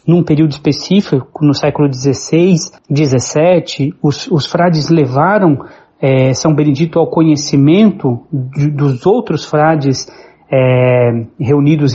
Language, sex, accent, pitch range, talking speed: Portuguese, male, Brazilian, 145-175 Hz, 95 wpm